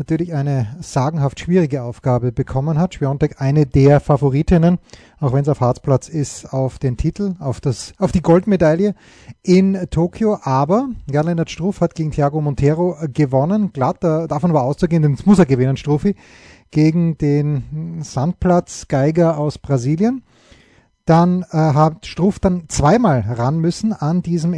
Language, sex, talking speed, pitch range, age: German, male, 145 wpm, 140-175 Hz, 30-49